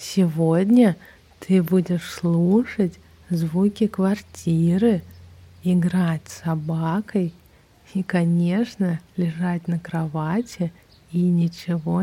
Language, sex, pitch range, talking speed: Russian, female, 160-180 Hz, 80 wpm